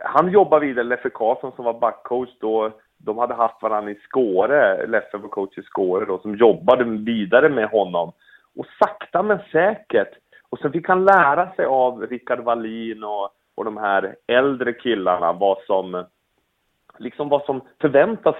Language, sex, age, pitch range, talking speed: English, male, 30-49, 115-150 Hz, 165 wpm